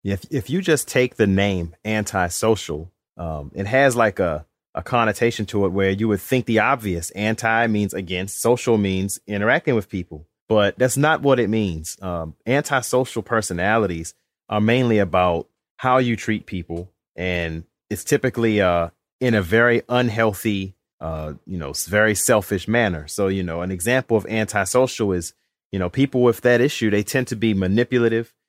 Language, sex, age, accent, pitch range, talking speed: English, male, 30-49, American, 95-120 Hz, 170 wpm